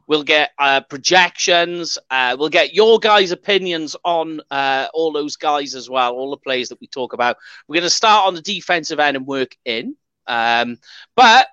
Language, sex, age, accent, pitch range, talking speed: English, male, 30-49, British, 135-220 Hz, 195 wpm